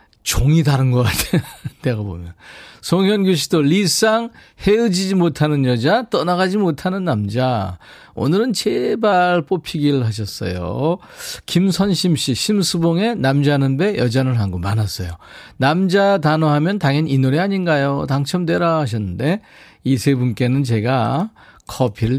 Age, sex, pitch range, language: 40-59, male, 110-175 Hz, Korean